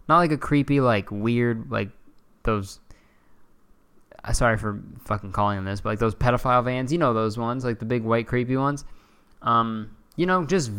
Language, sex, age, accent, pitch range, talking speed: English, male, 20-39, American, 110-145 Hz, 190 wpm